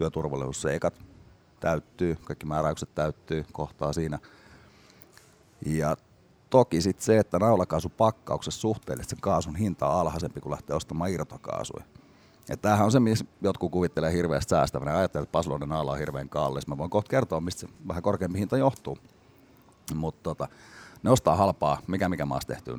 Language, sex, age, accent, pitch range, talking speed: Finnish, male, 30-49, native, 80-100 Hz, 145 wpm